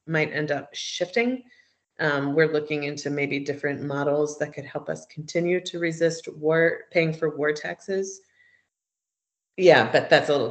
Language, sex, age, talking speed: English, female, 30-49, 160 wpm